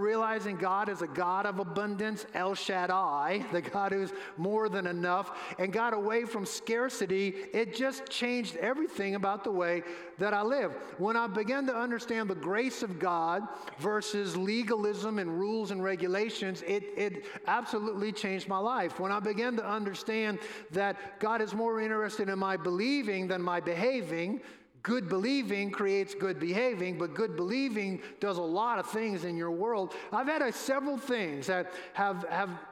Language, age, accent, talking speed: English, 50-69, American, 170 wpm